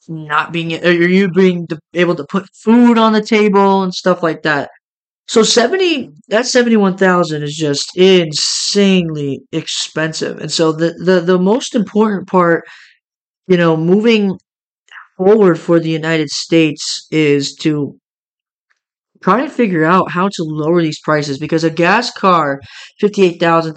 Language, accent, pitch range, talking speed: English, American, 155-195 Hz, 150 wpm